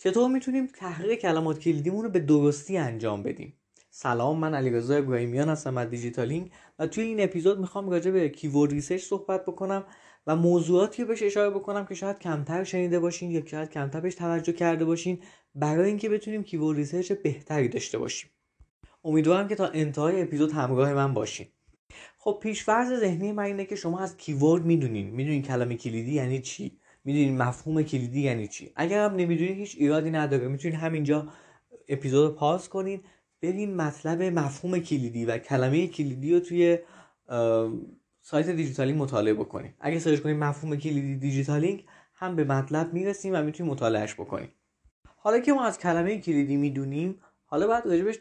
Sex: male